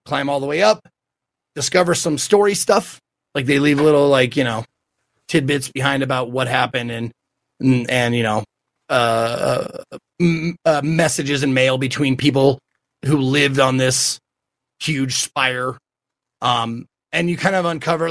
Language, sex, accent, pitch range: English, male, American, 130-165 Hz